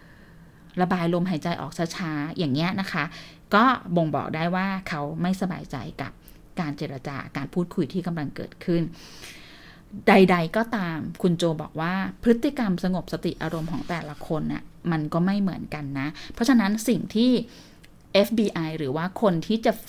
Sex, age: female, 20-39